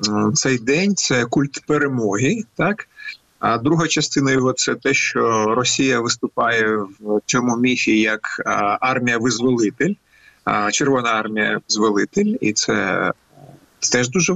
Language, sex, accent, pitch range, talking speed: Ukrainian, male, native, 125-165 Hz, 115 wpm